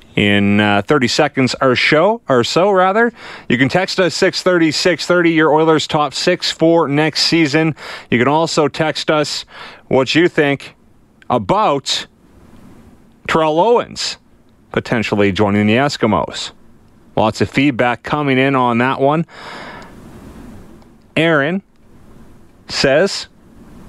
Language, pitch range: English, 115-155 Hz